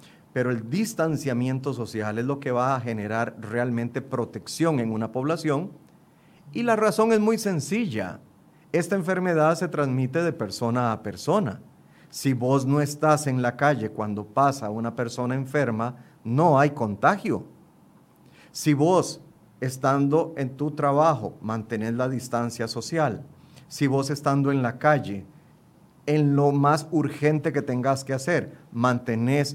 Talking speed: 140 wpm